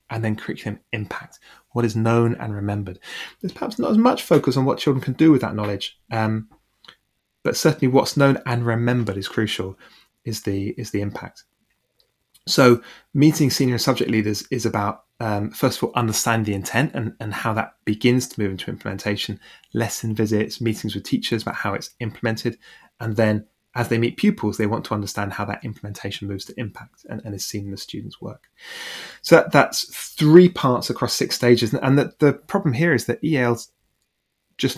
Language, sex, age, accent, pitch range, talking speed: English, male, 20-39, British, 105-135 Hz, 190 wpm